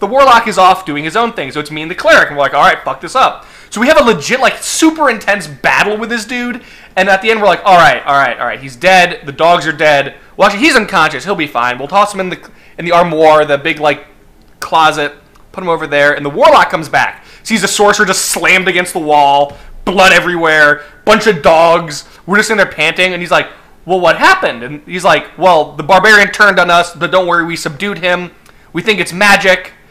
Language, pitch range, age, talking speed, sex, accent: English, 155-210 Hz, 20-39, 250 wpm, male, American